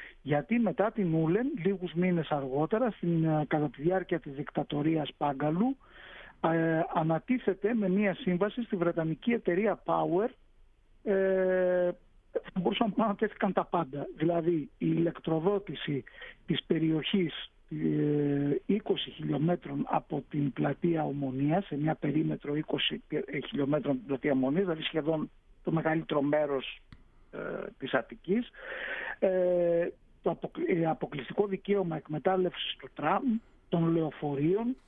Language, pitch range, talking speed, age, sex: Greek, 150-195 Hz, 115 wpm, 60-79, male